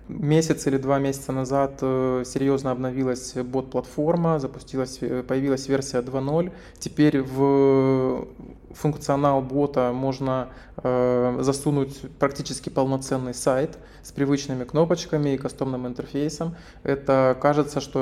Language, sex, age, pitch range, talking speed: Russian, male, 20-39, 130-145 Hz, 95 wpm